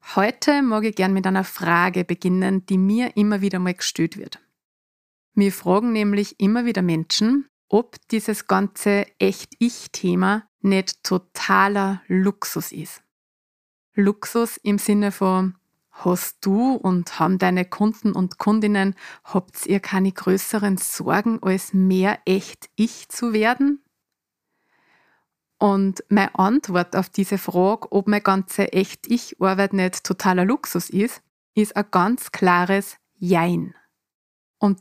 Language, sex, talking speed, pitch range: German, female, 120 wpm, 185-210 Hz